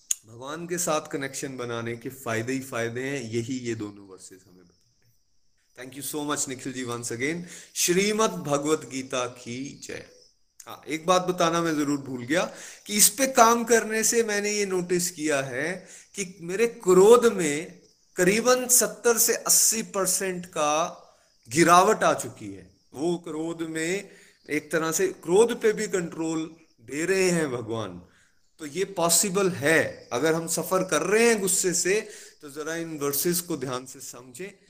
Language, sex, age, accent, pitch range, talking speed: Hindi, male, 30-49, native, 125-185 Hz, 170 wpm